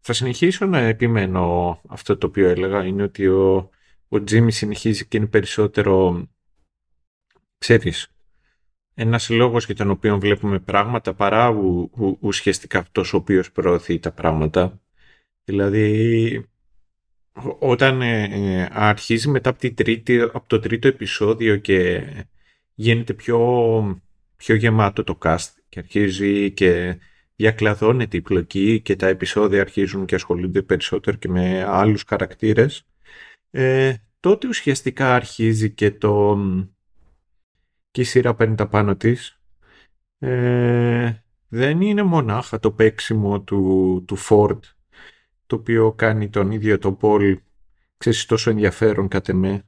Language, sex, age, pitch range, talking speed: Greek, male, 30-49, 95-115 Hz, 120 wpm